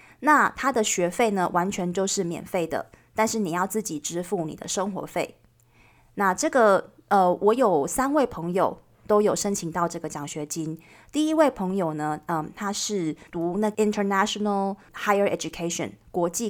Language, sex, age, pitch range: Chinese, female, 20-39, 170-225 Hz